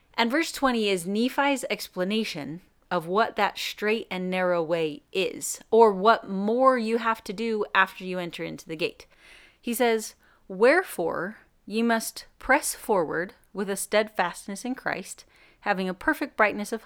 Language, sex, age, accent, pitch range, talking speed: English, female, 30-49, American, 185-240 Hz, 155 wpm